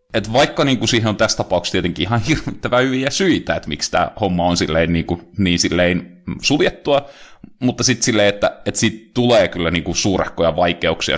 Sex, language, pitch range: male, Finnish, 90-120 Hz